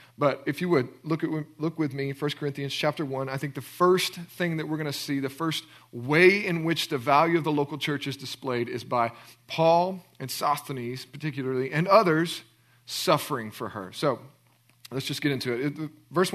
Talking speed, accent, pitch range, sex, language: 200 wpm, American, 140-175 Hz, male, English